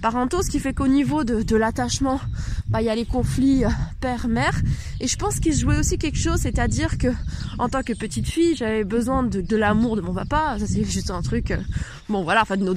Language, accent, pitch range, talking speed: French, French, 225-300 Hz, 225 wpm